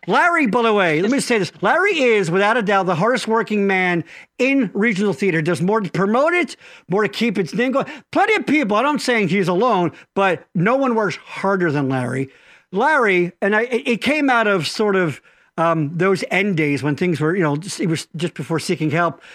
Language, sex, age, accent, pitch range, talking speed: English, male, 50-69, American, 190-280 Hz, 220 wpm